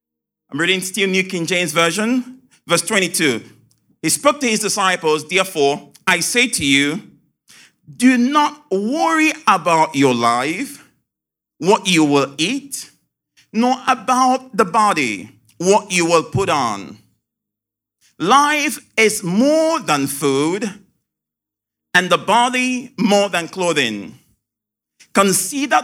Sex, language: male, English